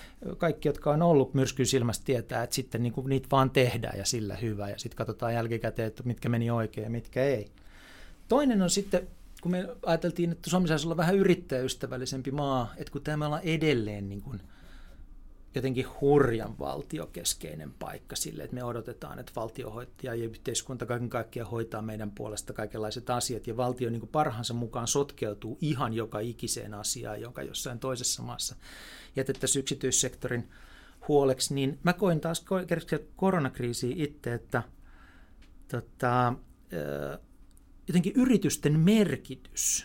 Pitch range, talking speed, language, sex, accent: 115-145 Hz, 140 wpm, Finnish, male, native